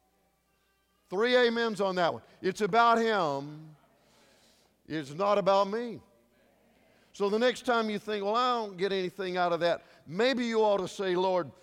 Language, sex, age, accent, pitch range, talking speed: English, male, 50-69, American, 150-205 Hz, 165 wpm